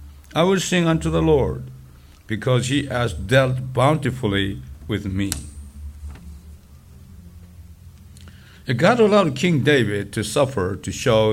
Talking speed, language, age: 110 wpm, English, 60-79